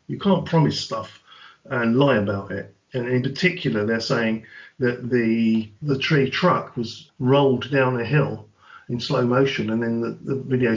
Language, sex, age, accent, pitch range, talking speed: English, male, 40-59, British, 115-155 Hz, 175 wpm